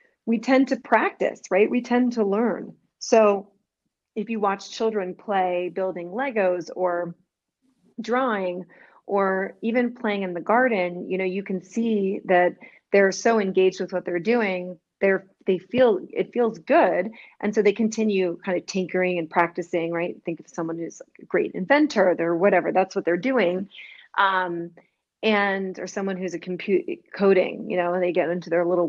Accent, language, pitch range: American, English, 180-215 Hz